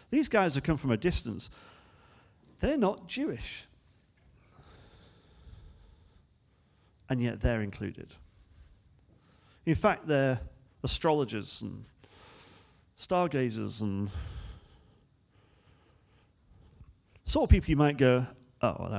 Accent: British